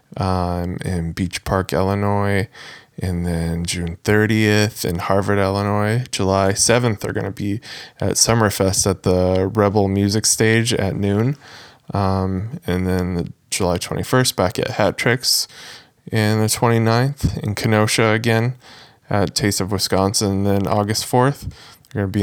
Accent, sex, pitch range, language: American, male, 95-110 Hz, English